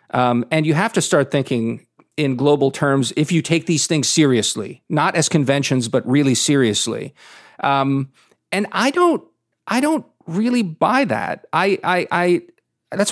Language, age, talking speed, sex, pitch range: English, 40-59, 160 wpm, male, 135-185 Hz